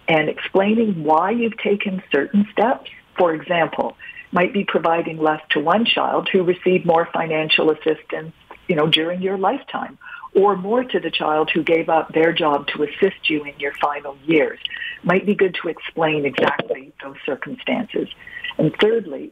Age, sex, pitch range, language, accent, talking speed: 50-69, female, 150-205 Hz, English, American, 165 wpm